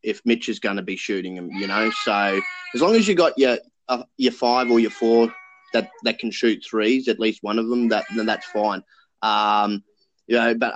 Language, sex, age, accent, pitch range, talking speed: English, male, 20-39, Australian, 105-120 Hz, 230 wpm